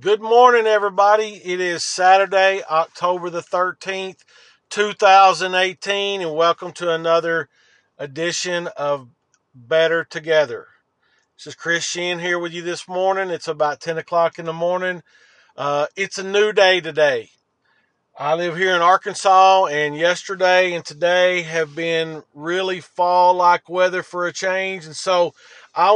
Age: 40-59